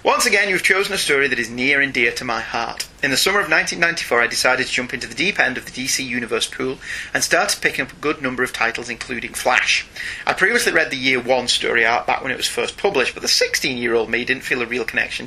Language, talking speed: English, 260 wpm